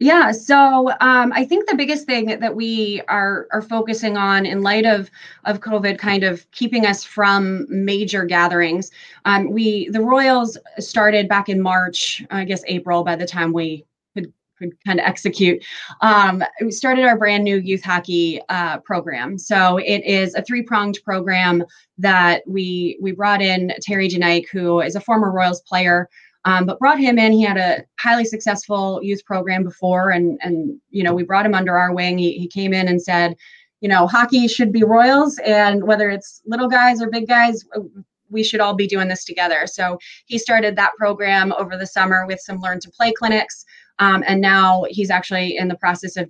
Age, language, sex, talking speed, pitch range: 20-39, English, female, 190 wpm, 180-215 Hz